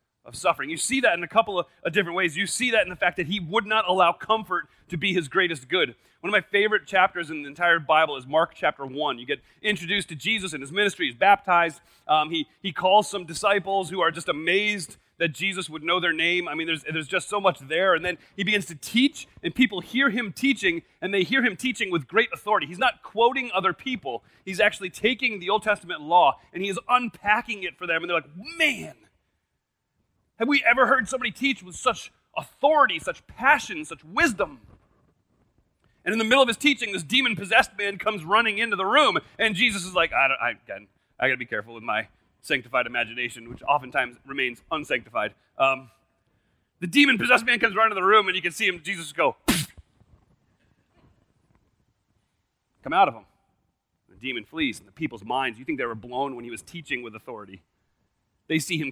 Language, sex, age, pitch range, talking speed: English, male, 30-49, 165-220 Hz, 210 wpm